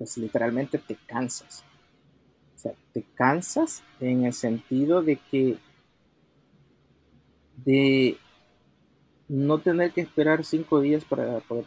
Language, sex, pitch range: Spanish, male, 115-145 Hz